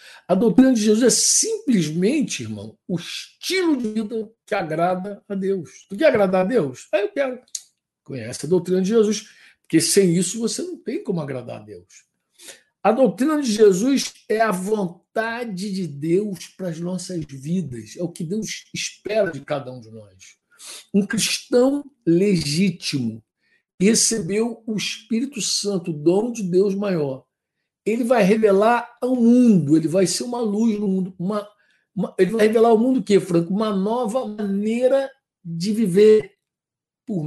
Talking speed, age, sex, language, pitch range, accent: 165 wpm, 60-79, male, Portuguese, 180-230 Hz, Brazilian